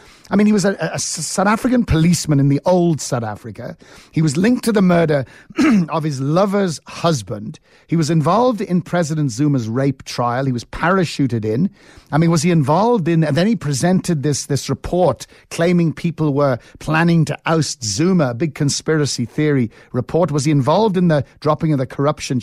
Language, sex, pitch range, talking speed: English, male, 130-175 Hz, 185 wpm